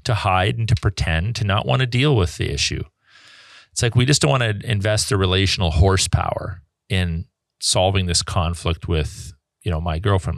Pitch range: 90-115 Hz